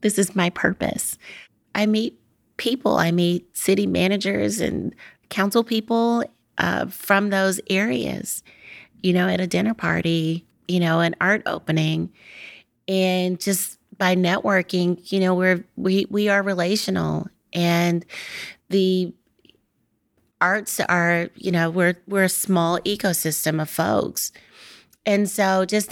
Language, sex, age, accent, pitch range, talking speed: English, female, 30-49, American, 175-200 Hz, 130 wpm